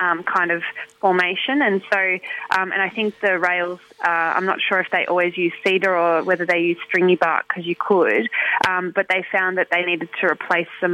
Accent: Australian